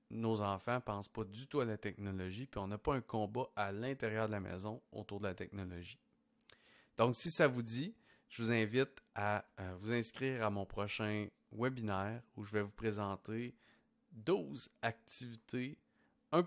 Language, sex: French, male